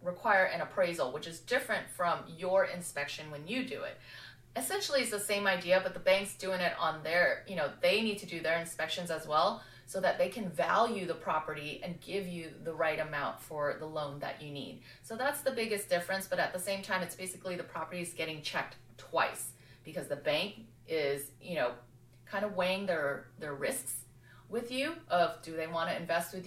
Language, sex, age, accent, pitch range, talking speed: English, female, 30-49, American, 155-195 Hz, 210 wpm